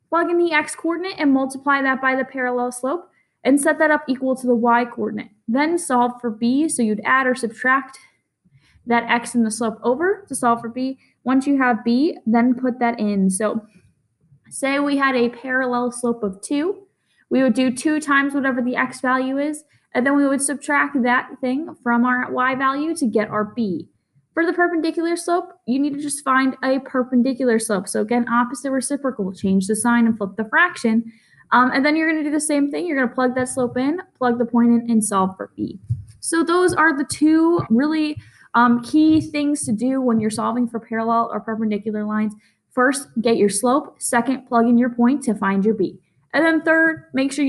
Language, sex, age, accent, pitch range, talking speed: English, female, 10-29, American, 230-285 Hz, 205 wpm